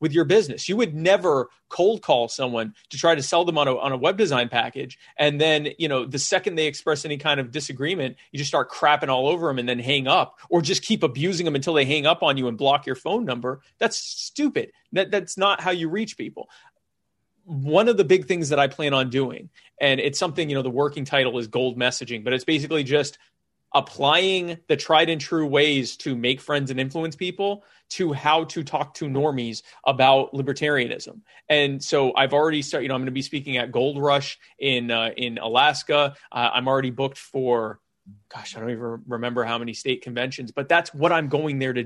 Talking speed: 220 wpm